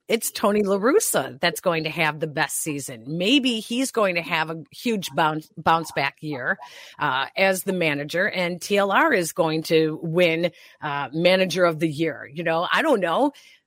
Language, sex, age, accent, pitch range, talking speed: English, female, 40-59, American, 165-215 Hz, 185 wpm